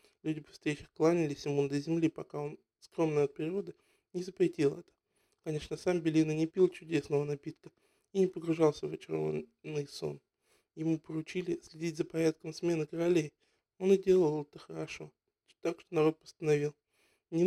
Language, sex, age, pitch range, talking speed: Russian, male, 20-39, 150-185 Hz, 155 wpm